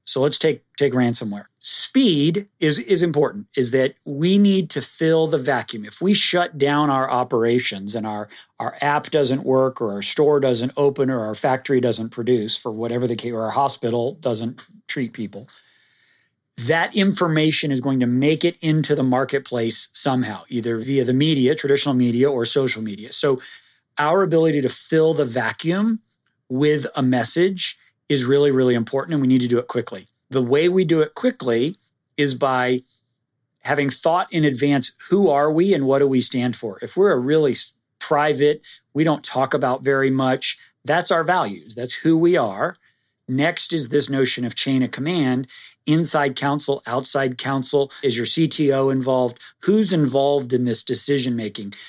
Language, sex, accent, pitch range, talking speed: English, male, American, 125-155 Hz, 175 wpm